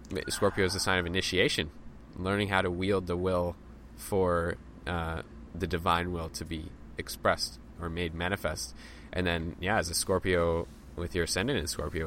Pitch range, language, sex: 85-105 Hz, English, male